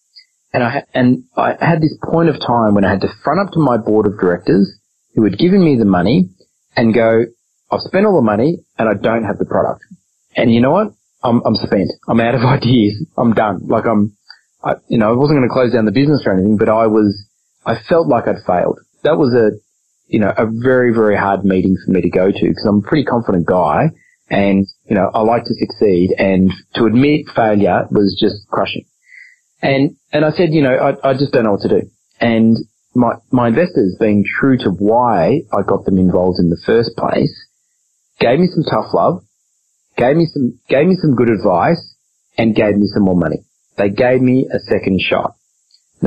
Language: English